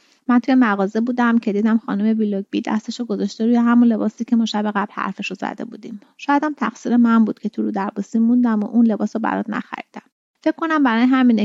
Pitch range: 210-250 Hz